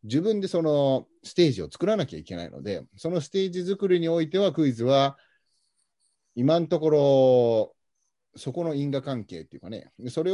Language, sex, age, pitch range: Japanese, male, 30-49, 110-160 Hz